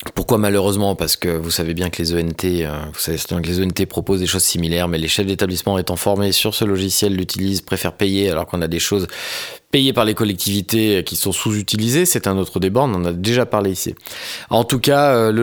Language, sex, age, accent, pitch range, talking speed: French, male, 20-39, French, 85-110 Hz, 220 wpm